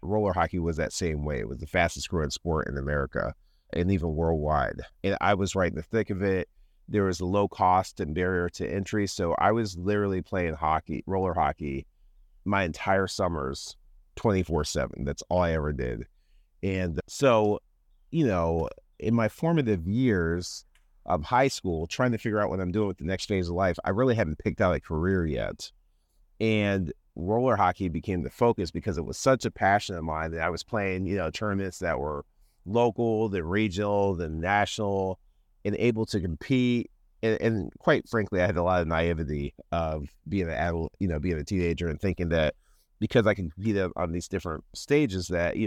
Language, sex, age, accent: English, male, 30-49, American